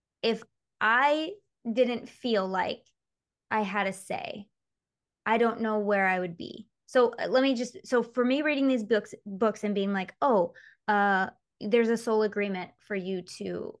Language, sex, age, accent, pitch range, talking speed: English, female, 20-39, American, 195-245 Hz, 170 wpm